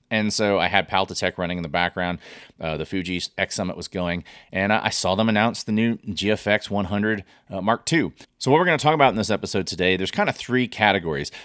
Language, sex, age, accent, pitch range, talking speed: English, male, 30-49, American, 90-110 Hz, 225 wpm